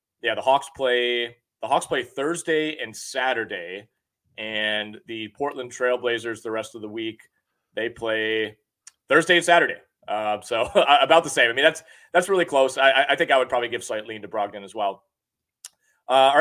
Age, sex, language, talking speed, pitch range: 30-49, male, English, 185 wpm, 115-150 Hz